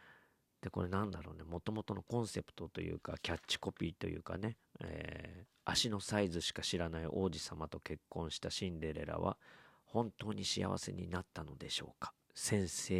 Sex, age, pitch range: male, 40-59, 80-100 Hz